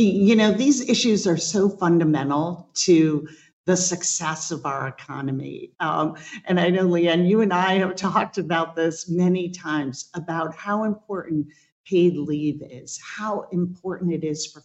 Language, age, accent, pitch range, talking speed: English, 50-69, American, 155-195 Hz, 155 wpm